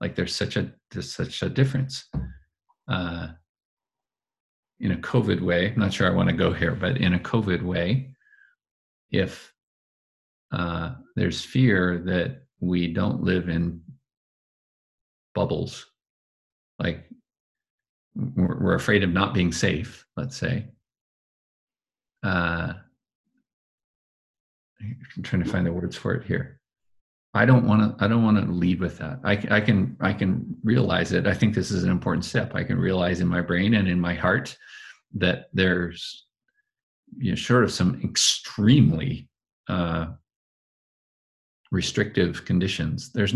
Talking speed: 140 wpm